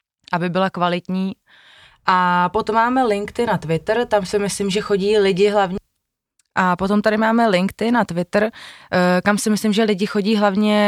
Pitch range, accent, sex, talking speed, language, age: 165-195 Hz, native, female, 165 wpm, Czech, 20-39